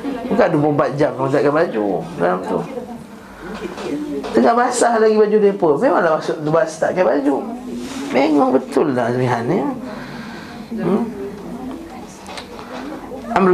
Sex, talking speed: male, 120 wpm